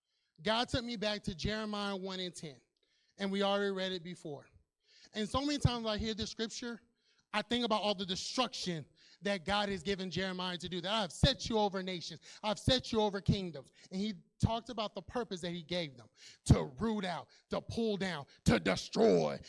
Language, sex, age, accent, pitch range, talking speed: English, male, 30-49, American, 170-215 Hz, 205 wpm